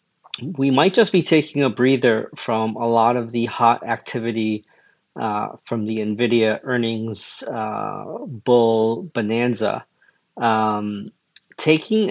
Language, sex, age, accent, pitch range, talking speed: English, male, 40-59, American, 115-140 Hz, 120 wpm